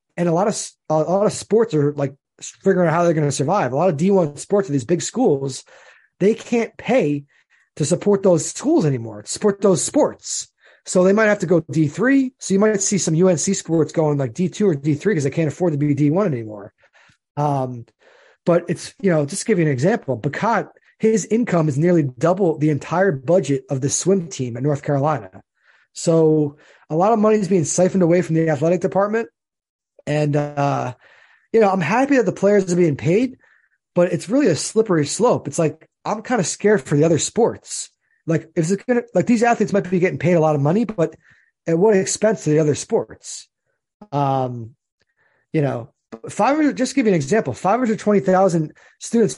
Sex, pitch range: male, 150-200 Hz